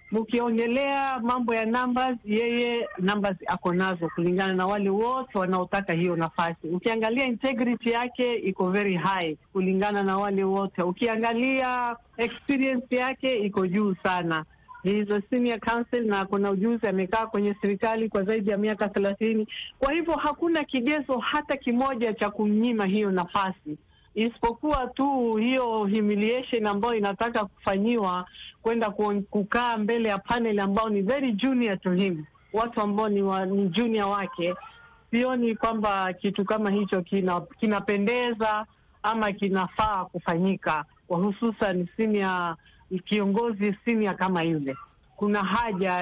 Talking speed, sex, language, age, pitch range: 125 wpm, female, Swahili, 50-69, 190-235 Hz